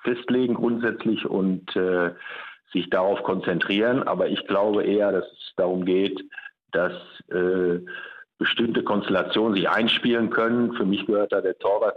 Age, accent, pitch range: 50-69, German, 95-115 Hz